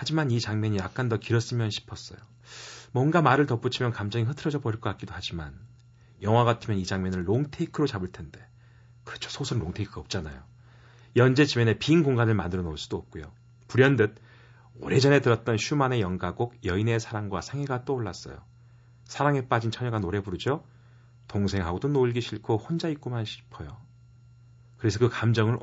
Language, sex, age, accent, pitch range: Korean, male, 40-59, native, 105-125 Hz